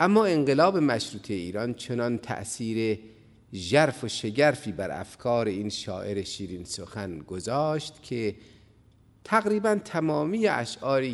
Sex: male